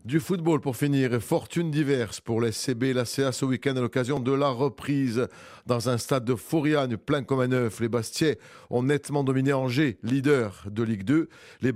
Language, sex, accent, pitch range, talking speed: French, male, French, 120-145 Hz, 200 wpm